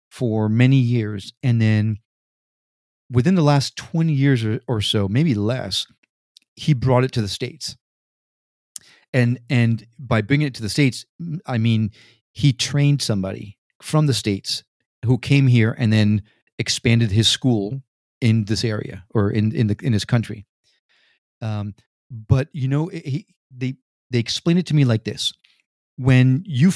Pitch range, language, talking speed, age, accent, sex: 110-145 Hz, English, 155 wpm, 40-59, American, male